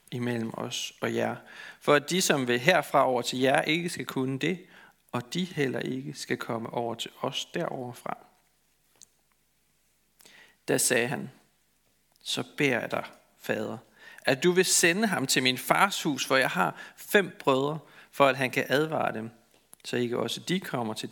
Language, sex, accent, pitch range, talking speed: Danish, male, native, 125-170 Hz, 175 wpm